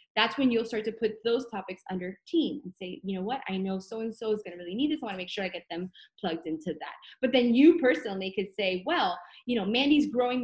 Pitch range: 200-265 Hz